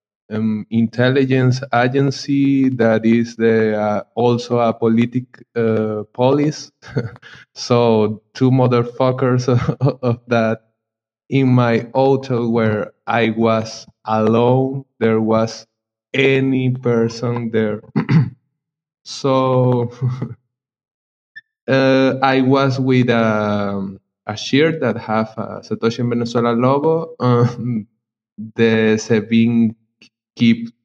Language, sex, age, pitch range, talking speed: English, male, 20-39, 110-125 Hz, 90 wpm